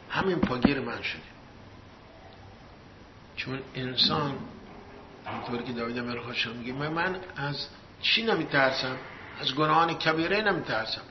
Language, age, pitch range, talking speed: English, 60-79, 120-155 Hz, 105 wpm